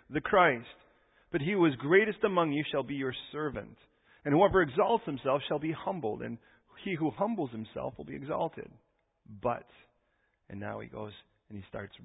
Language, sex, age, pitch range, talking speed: English, male, 40-59, 140-195 Hz, 180 wpm